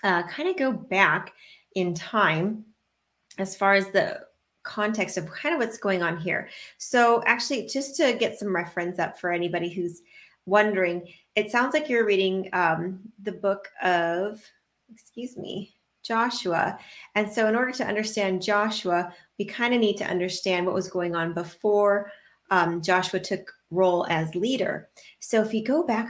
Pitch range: 175-215 Hz